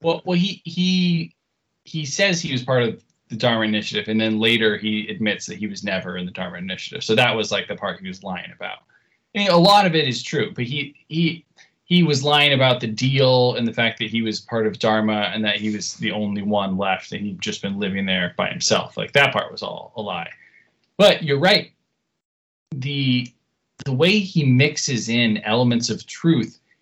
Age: 20-39